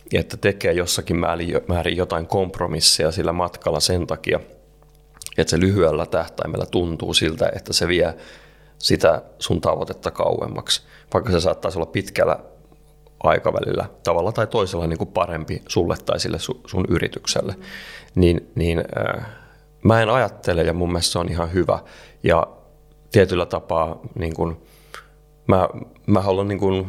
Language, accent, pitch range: Finnish, native, 85-100 Hz